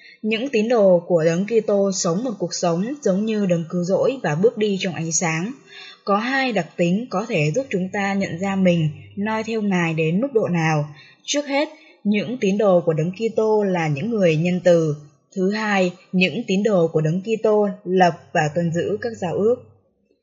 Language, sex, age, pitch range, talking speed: Vietnamese, female, 10-29, 170-220 Hz, 200 wpm